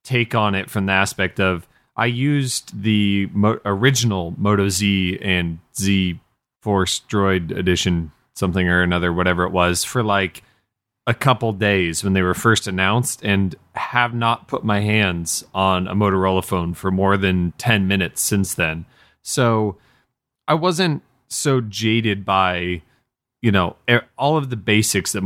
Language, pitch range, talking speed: English, 90-115 Hz, 150 wpm